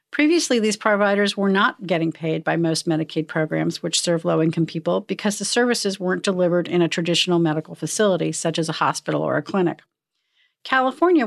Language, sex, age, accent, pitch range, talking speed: English, female, 50-69, American, 165-200 Hz, 175 wpm